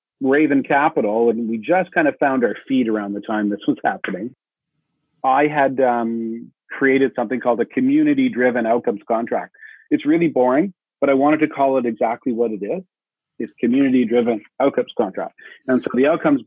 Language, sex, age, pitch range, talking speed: English, male, 40-59, 115-145 Hz, 180 wpm